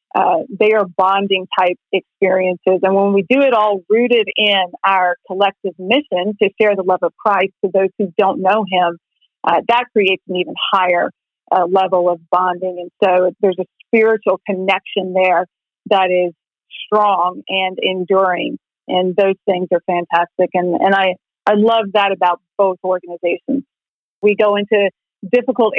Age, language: 40-59, English